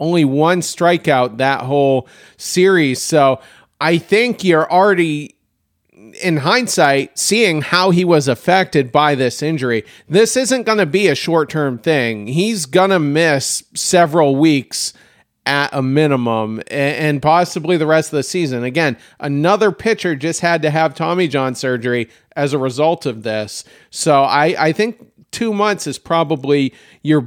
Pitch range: 140-185 Hz